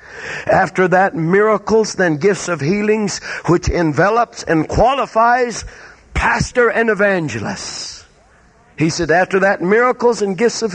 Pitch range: 135-200 Hz